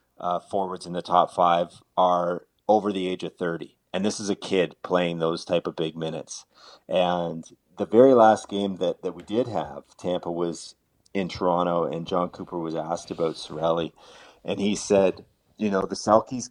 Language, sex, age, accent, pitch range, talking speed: English, male, 30-49, American, 85-100 Hz, 185 wpm